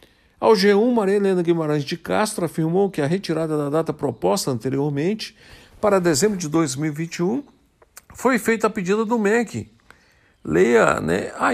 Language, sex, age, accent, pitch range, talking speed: Portuguese, male, 60-79, Brazilian, 155-205 Hz, 145 wpm